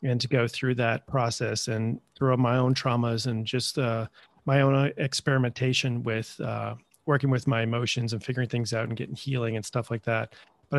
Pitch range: 120-140 Hz